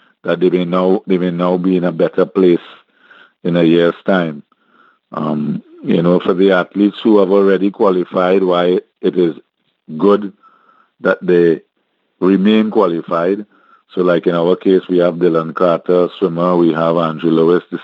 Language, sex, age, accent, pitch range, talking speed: English, male, 50-69, Indian, 85-95 Hz, 160 wpm